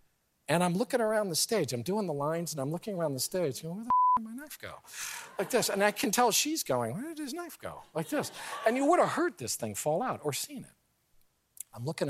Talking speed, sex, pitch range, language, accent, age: 275 wpm, male, 115-190 Hz, English, American, 50-69